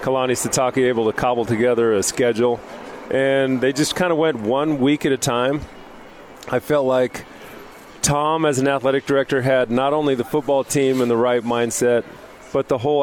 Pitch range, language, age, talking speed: 125-150 Hz, English, 40-59, 185 wpm